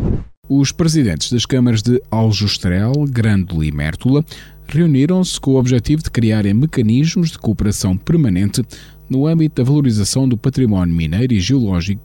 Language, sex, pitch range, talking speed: Portuguese, male, 95-140 Hz, 140 wpm